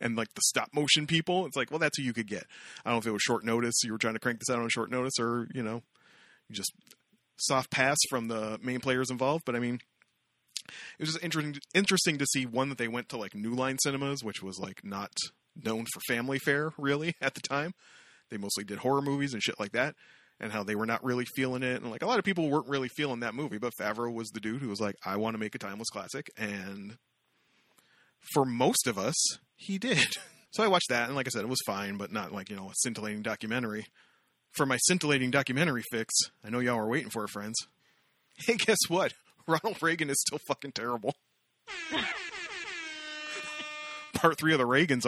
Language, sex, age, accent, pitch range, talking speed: English, male, 30-49, American, 115-155 Hz, 230 wpm